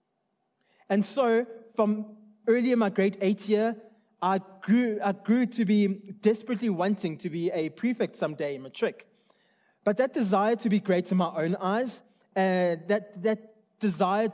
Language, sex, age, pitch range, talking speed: English, male, 20-39, 180-225 Hz, 165 wpm